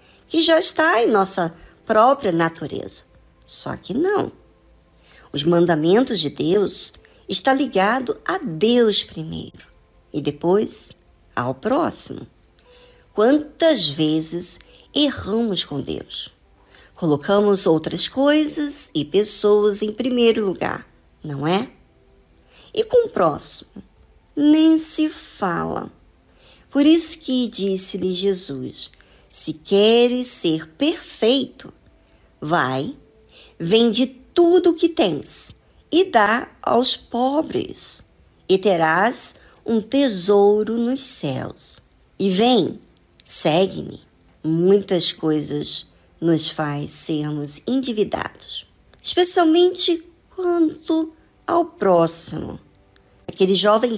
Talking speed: 95 wpm